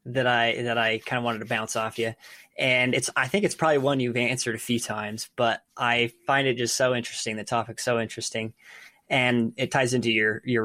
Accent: American